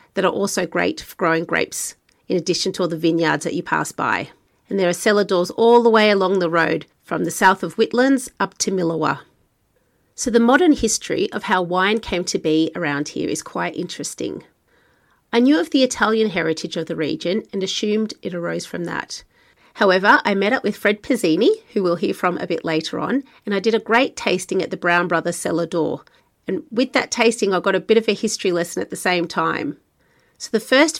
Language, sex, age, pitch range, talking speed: English, female, 30-49, 175-225 Hz, 215 wpm